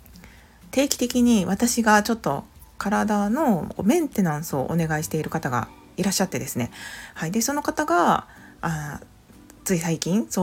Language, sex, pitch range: Japanese, female, 160-215 Hz